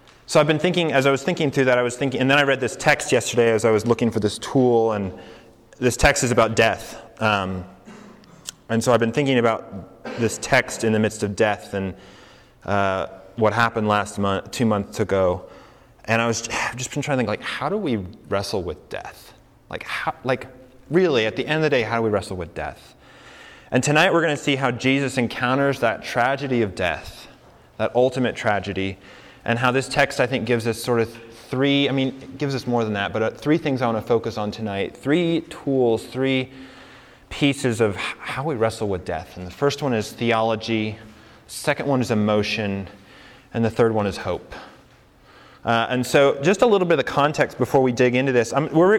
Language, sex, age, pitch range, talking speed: English, male, 20-39, 110-135 Hz, 210 wpm